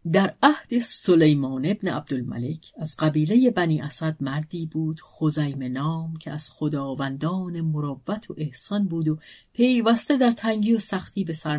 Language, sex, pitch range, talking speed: Persian, female, 155-215 Hz, 145 wpm